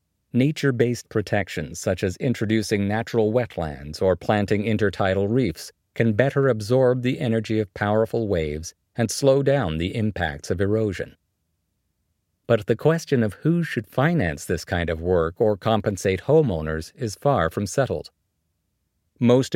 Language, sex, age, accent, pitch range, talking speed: English, male, 50-69, American, 90-120 Hz, 140 wpm